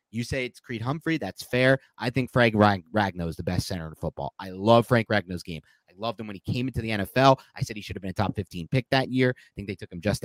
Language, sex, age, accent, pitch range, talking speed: English, male, 30-49, American, 100-150 Hz, 285 wpm